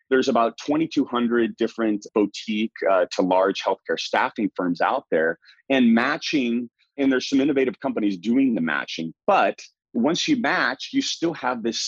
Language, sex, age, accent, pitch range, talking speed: English, male, 30-49, American, 100-145 Hz, 155 wpm